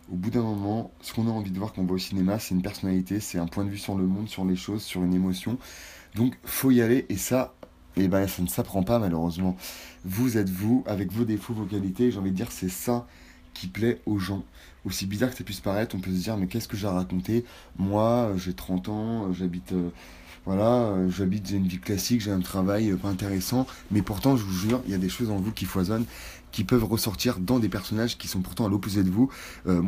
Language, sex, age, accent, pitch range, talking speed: French, male, 30-49, French, 90-110 Hz, 250 wpm